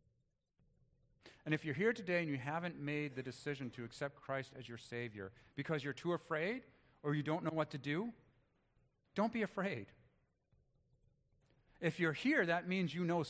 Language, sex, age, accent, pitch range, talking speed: English, male, 40-59, American, 125-165 Hz, 170 wpm